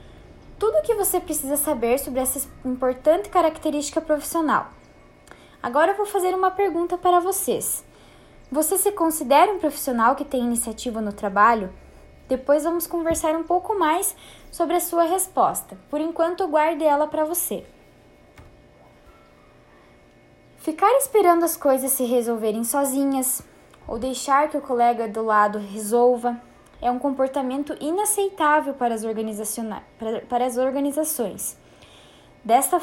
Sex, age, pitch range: female, 10-29, 245-320 Hz